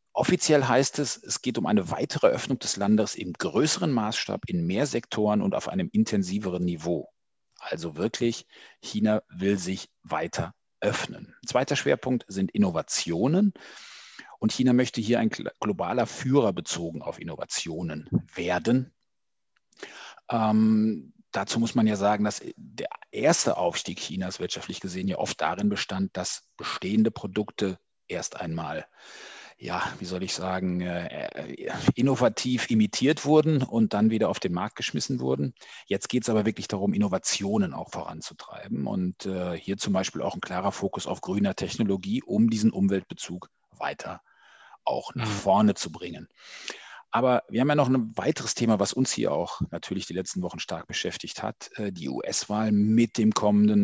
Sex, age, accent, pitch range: male, 40-59, German, 95-130 Hz